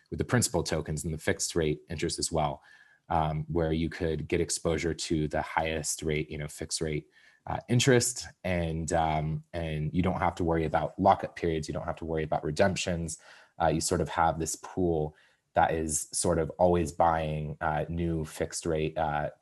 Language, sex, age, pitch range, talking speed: English, male, 20-39, 80-85 Hz, 195 wpm